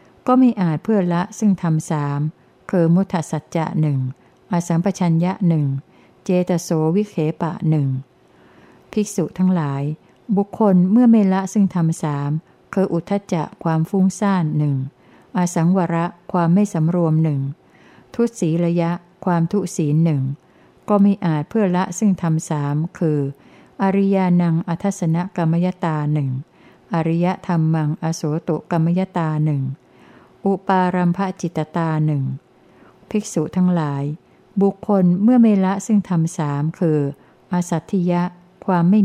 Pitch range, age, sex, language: 155-190 Hz, 60-79, female, Thai